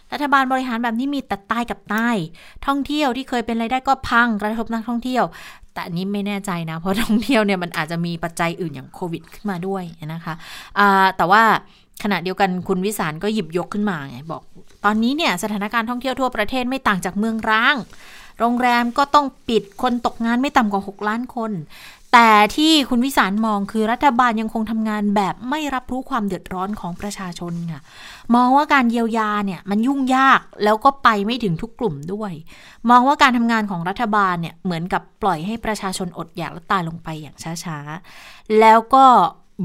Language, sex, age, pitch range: Thai, female, 20-39, 190-240 Hz